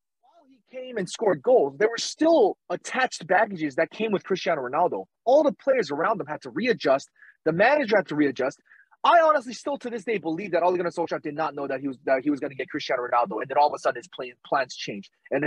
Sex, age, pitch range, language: male, 30-49, 150-225 Hz, English